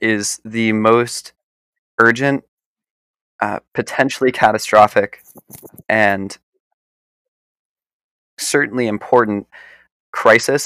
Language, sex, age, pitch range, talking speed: English, male, 20-39, 105-130 Hz, 60 wpm